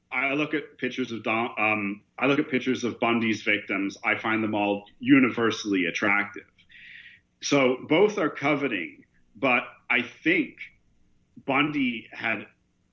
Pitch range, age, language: 100-130 Hz, 40-59, English